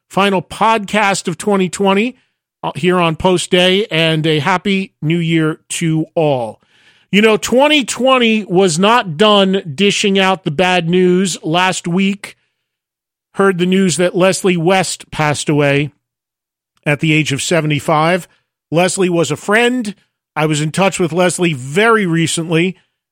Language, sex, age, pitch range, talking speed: English, male, 40-59, 160-190 Hz, 140 wpm